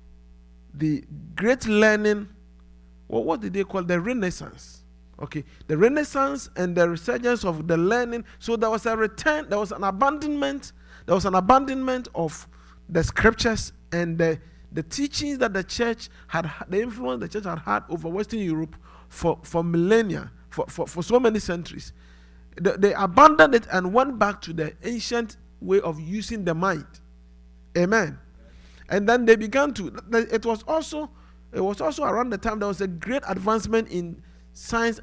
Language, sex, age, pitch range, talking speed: English, male, 50-69, 165-235 Hz, 165 wpm